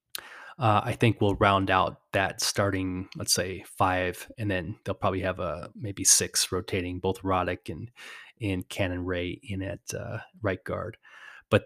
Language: English